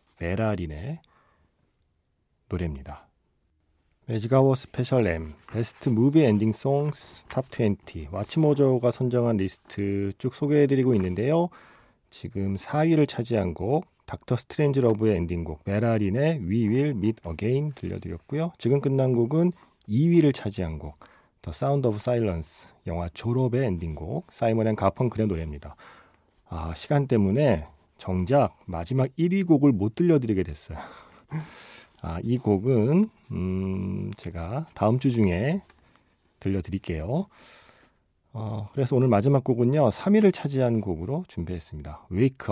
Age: 40-59